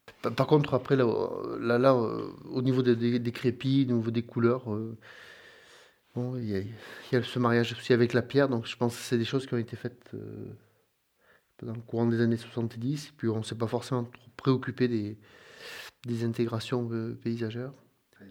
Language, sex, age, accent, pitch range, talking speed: French, male, 30-49, French, 115-125 Hz, 200 wpm